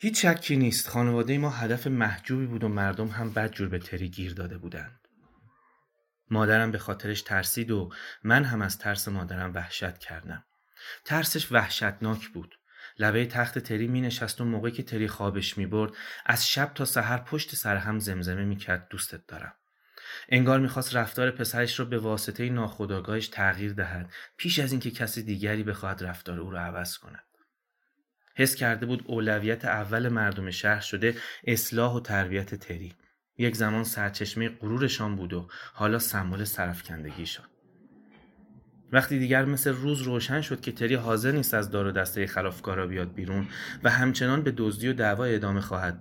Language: Persian